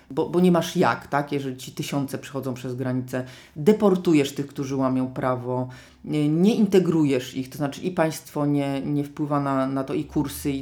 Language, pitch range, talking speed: Polish, 140-175 Hz, 190 wpm